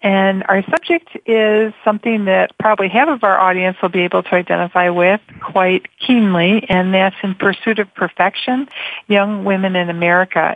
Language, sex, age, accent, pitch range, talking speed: English, female, 50-69, American, 175-200 Hz, 165 wpm